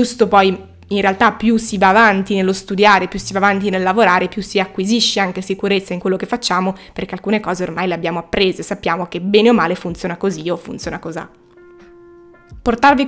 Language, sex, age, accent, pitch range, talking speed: Italian, female, 20-39, native, 190-225 Hz, 200 wpm